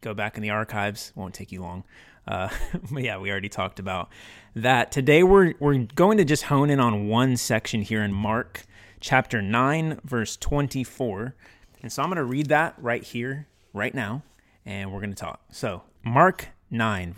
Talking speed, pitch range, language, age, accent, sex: 190 wpm, 100-135 Hz, English, 30-49, American, male